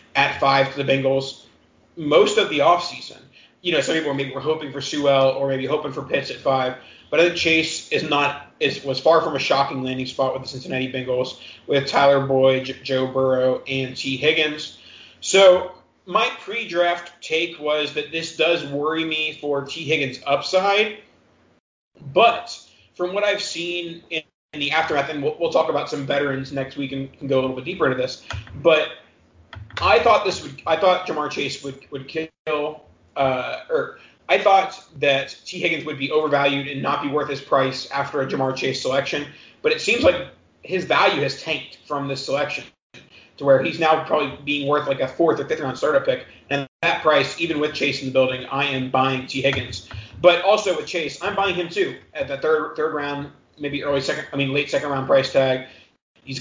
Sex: male